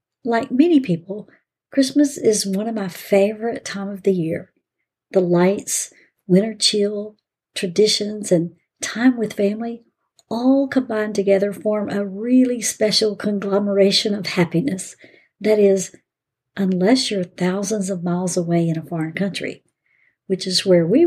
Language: English